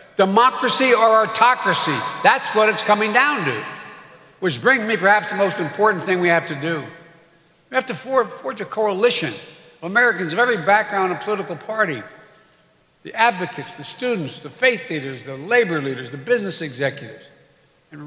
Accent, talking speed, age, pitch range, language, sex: American, 165 wpm, 60-79, 150-195 Hz, English, male